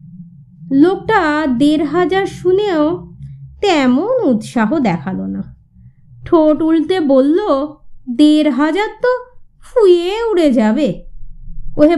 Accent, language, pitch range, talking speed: native, Bengali, 215-340 Hz, 85 wpm